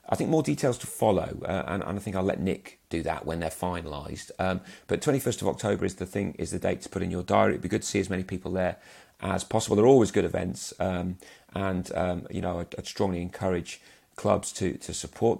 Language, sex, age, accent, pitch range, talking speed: English, male, 40-59, British, 90-110 Hz, 245 wpm